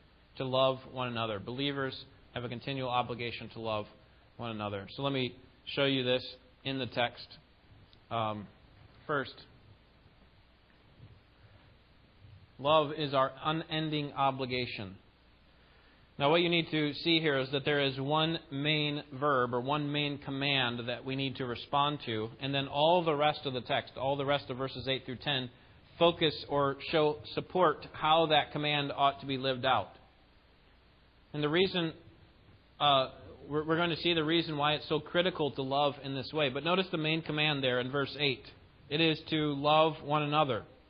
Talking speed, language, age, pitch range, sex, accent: 170 wpm, English, 30-49, 125-155 Hz, male, American